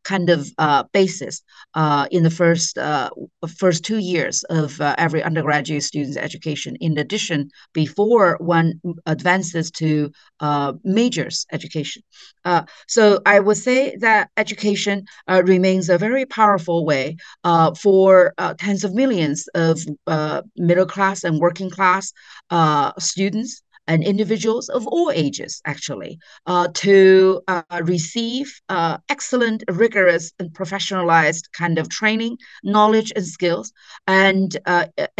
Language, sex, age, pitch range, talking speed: English, female, 40-59, 170-205 Hz, 135 wpm